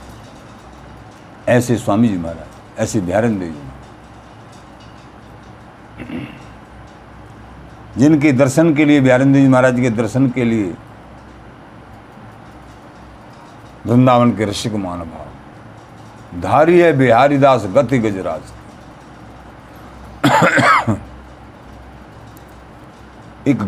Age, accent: 60-79, native